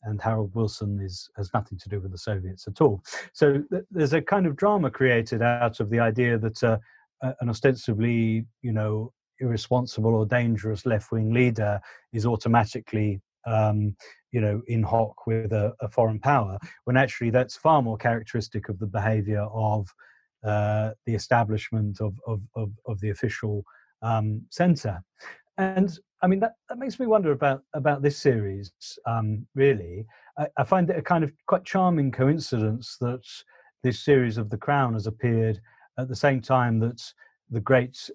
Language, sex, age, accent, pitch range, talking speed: English, male, 30-49, British, 110-130 Hz, 170 wpm